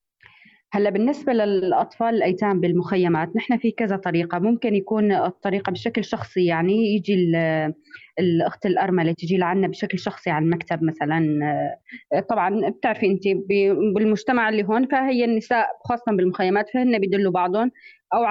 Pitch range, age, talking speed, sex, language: 185-245 Hz, 20-39, 130 wpm, female, Arabic